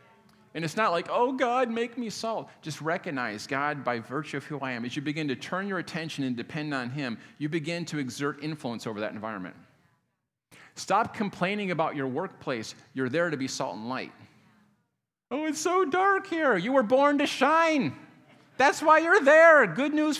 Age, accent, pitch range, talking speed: 40-59, American, 130-190 Hz, 195 wpm